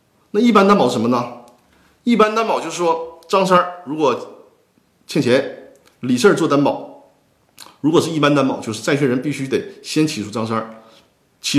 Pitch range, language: 115-175 Hz, Chinese